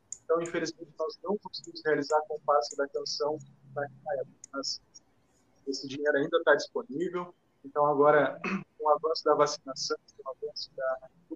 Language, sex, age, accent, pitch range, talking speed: Portuguese, male, 20-39, Brazilian, 145-180 Hz, 150 wpm